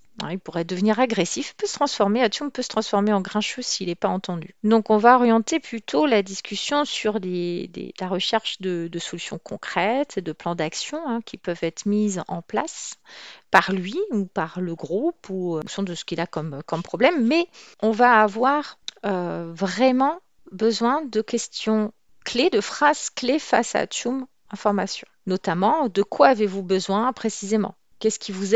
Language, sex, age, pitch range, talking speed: French, female, 40-59, 185-240 Hz, 185 wpm